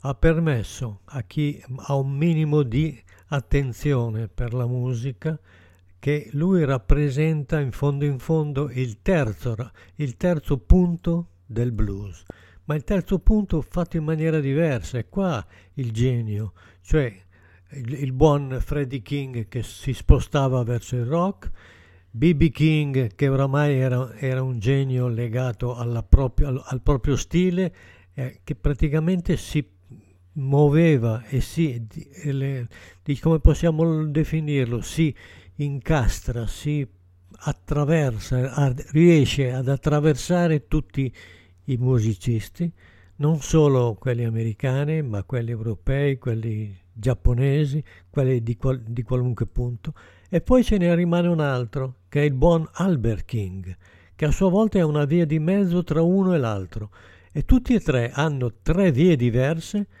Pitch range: 115-155 Hz